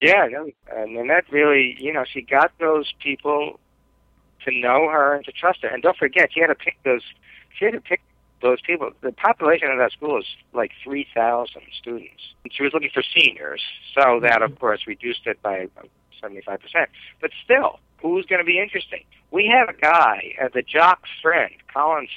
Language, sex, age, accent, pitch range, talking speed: English, male, 60-79, American, 120-160 Hz, 200 wpm